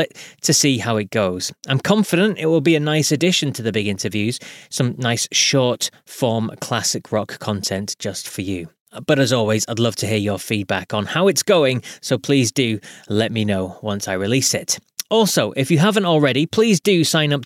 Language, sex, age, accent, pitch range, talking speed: English, male, 20-39, British, 120-165 Hz, 205 wpm